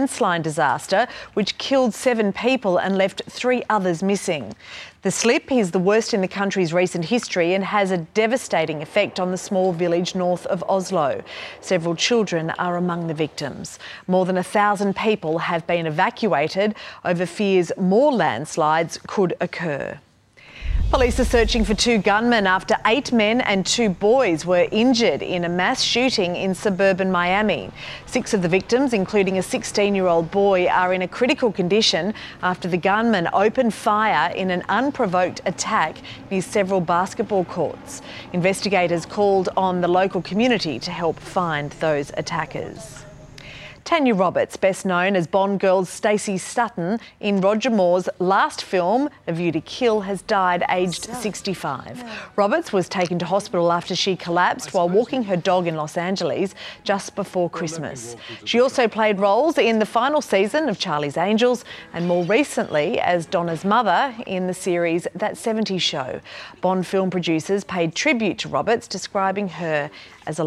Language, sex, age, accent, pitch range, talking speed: English, female, 40-59, Australian, 175-215 Hz, 160 wpm